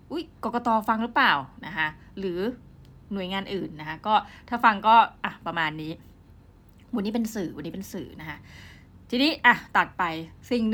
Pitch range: 165-225 Hz